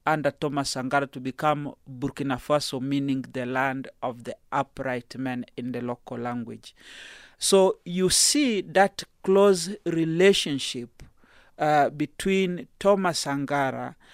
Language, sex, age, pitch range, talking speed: English, male, 40-59, 140-180 Hz, 120 wpm